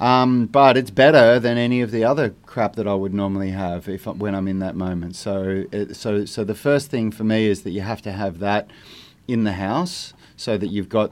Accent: Australian